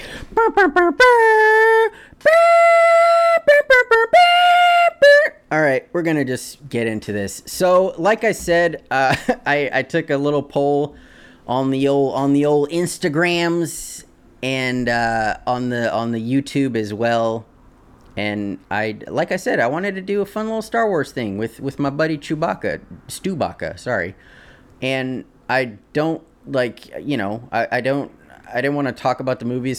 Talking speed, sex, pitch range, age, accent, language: 150 wpm, male, 120-180 Hz, 30-49, American, English